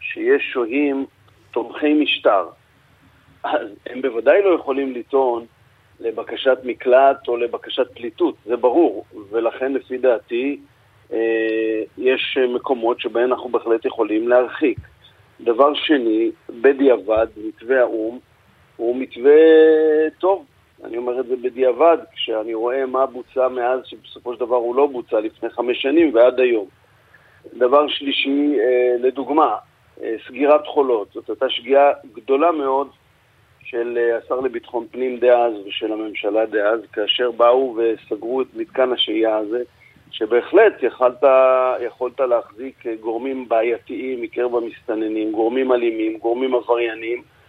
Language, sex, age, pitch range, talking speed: Hebrew, male, 50-69, 120-140 Hz, 120 wpm